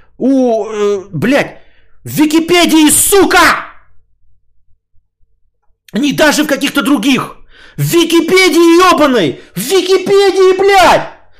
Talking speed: 90 wpm